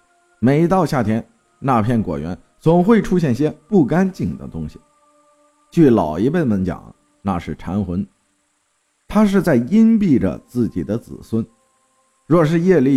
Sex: male